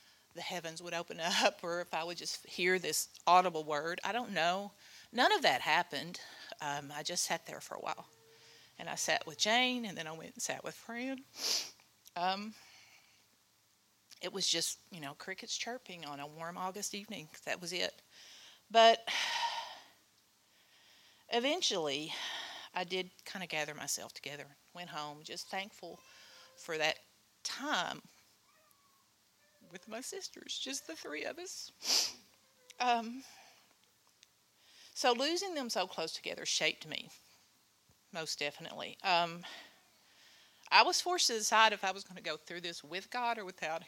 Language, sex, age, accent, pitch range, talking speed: English, female, 40-59, American, 170-245 Hz, 150 wpm